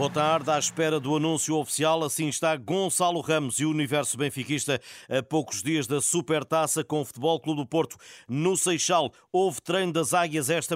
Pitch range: 140-170 Hz